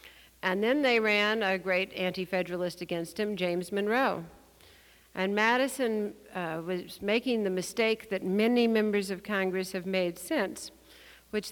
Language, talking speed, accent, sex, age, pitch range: English, 140 wpm, American, female, 60-79, 170-210 Hz